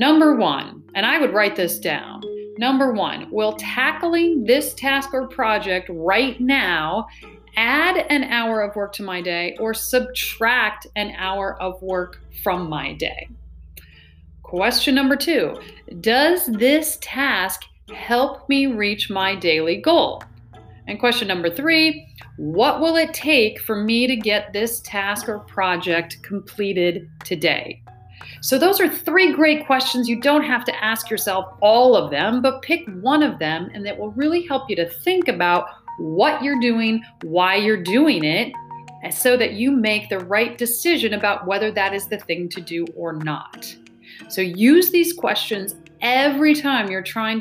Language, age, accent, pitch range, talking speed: English, 40-59, American, 185-260 Hz, 160 wpm